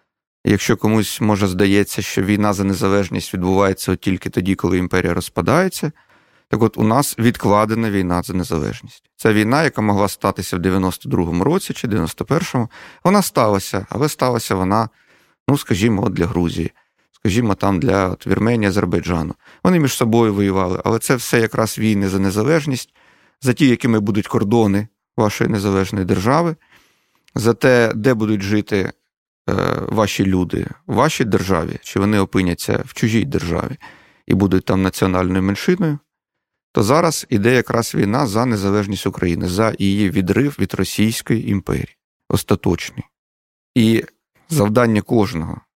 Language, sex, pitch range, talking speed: Ukrainian, male, 95-120 Hz, 140 wpm